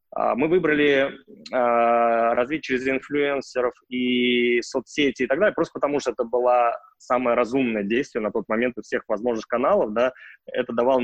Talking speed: 160 wpm